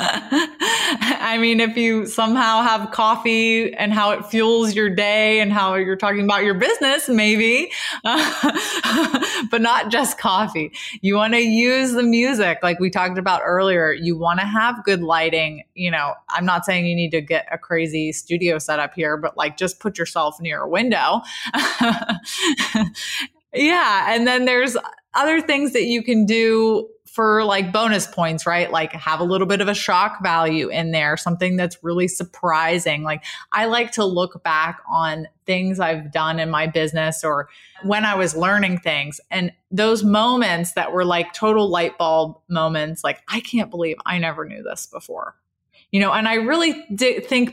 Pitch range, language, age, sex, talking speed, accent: 165-225 Hz, English, 20-39, female, 175 wpm, American